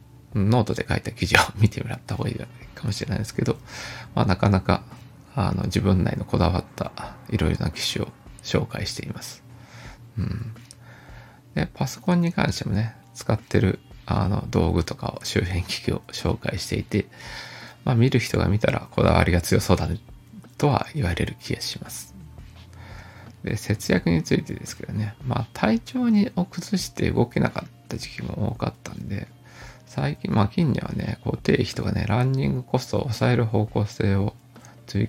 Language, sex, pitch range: Japanese, male, 105-130 Hz